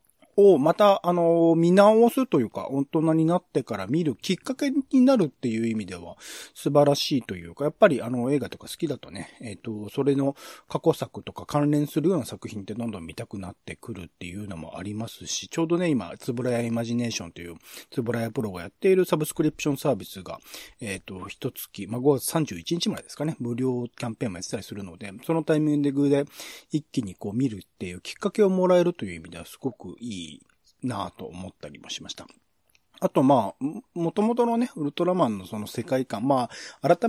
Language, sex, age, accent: Japanese, male, 40-59, native